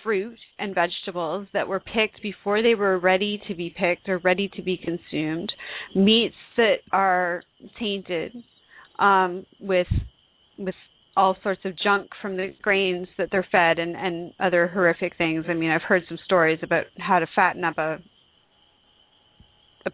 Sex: female